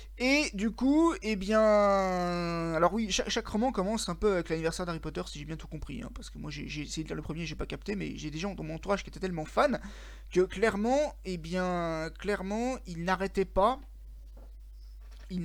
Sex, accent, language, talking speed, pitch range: male, French, Spanish, 220 wpm, 165-220 Hz